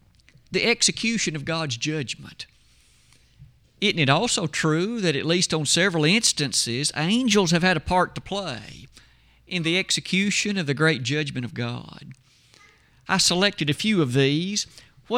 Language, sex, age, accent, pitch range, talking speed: English, male, 50-69, American, 135-205 Hz, 150 wpm